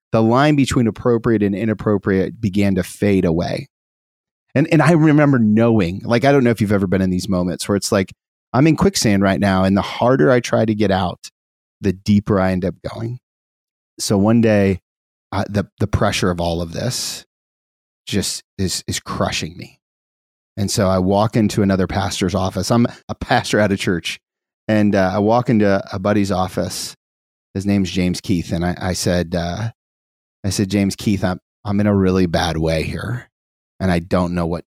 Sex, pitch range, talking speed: male, 85-105 Hz, 190 wpm